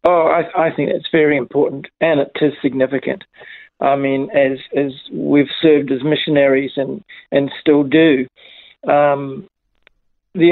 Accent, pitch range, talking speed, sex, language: Australian, 140-170 Hz, 145 wpm, male, English